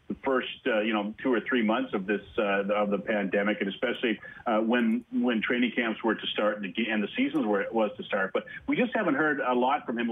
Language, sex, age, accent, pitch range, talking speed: English, male, 40-59, American, 115-185 Hz, 245 wpm